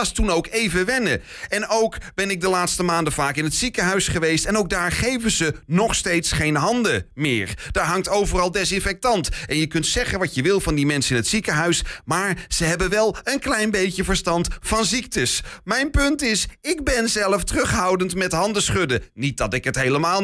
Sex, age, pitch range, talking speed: male, 30-49, 155-210 Hz, 200 wpm